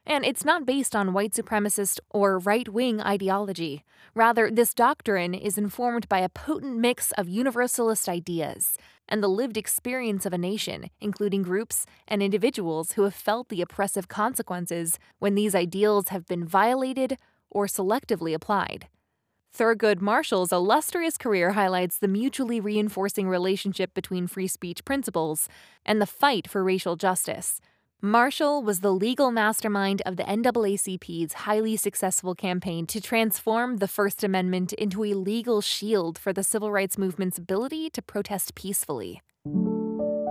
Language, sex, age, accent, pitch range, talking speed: English, female, 20-39, American, 190-230 Hz, 145 wpm